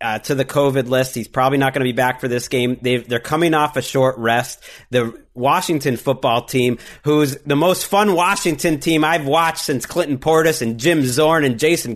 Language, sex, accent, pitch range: English, male, American, 135-190 Hz